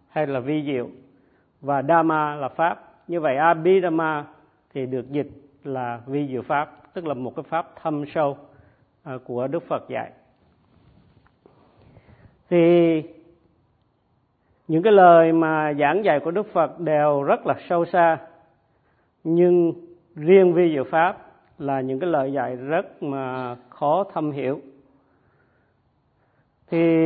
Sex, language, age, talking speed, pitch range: male, Vietnamese, 50-69, 135 wpm, 135-170 Hz